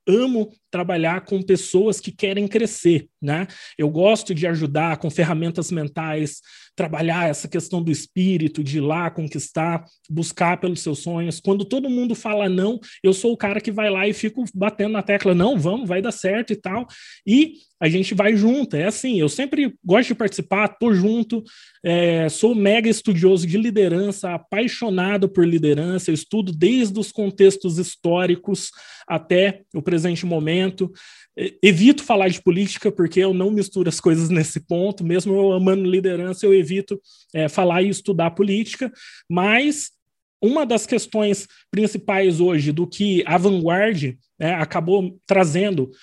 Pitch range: 175-215 Hz